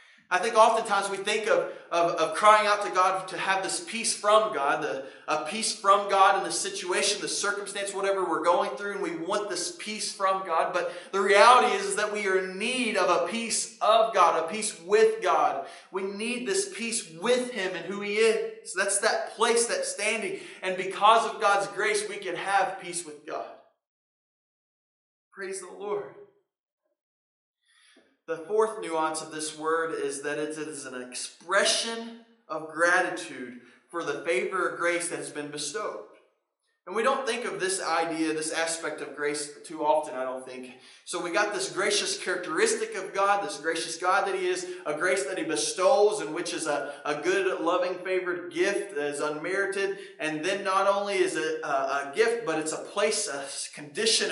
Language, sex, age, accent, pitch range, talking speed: English, male, 30-49, American, 170-225 Hz, 190 wpm